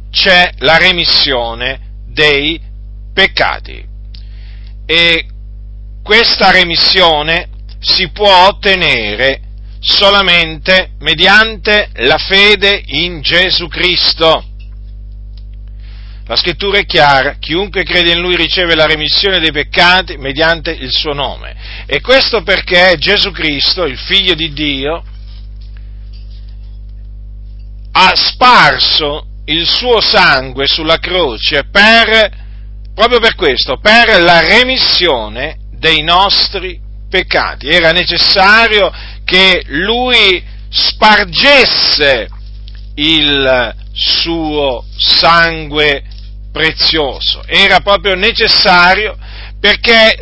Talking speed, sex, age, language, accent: 90 wpm, male, 40-59, Italian, native